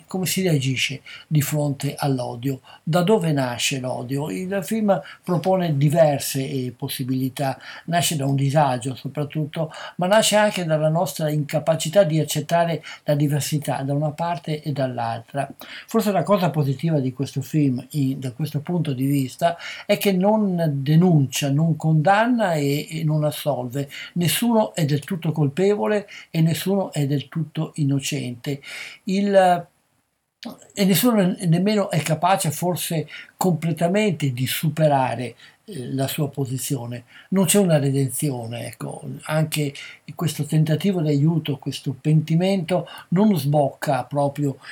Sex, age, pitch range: male, 60-79, 135-165 Hz